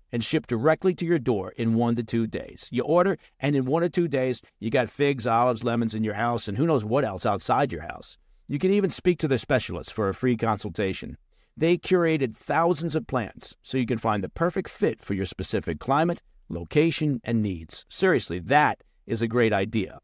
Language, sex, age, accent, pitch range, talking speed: English, male, 50-69, American, 110-155 Hz, 215 wpm